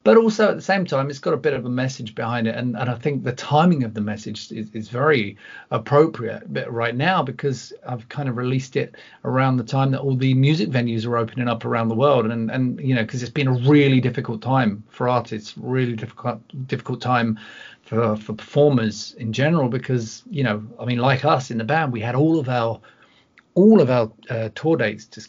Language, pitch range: English, 115-140 Hz